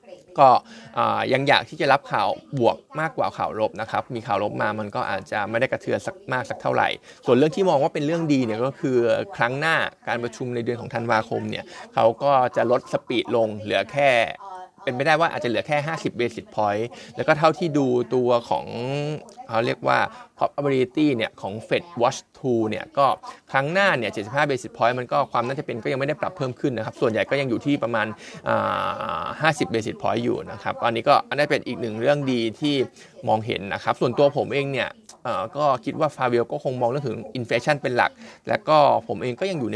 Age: 20-39